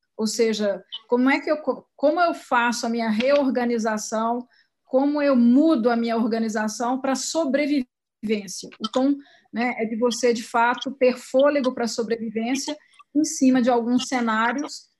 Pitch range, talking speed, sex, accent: 225-265 Hz, 150 wpm, female, Brazilian